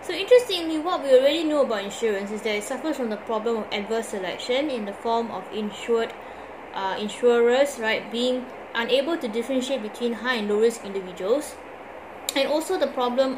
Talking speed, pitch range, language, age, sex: 180 wpm, 210-270 Hz, English, 20-39, female